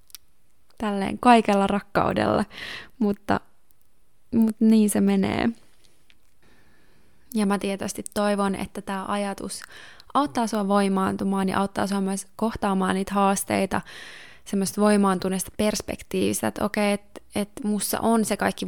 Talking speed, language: 115 wpm, Finnish